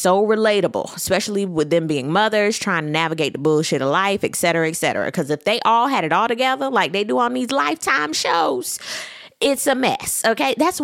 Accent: American